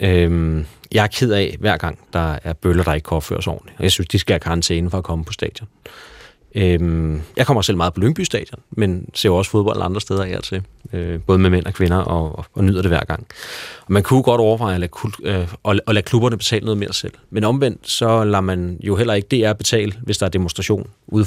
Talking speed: 250 wpm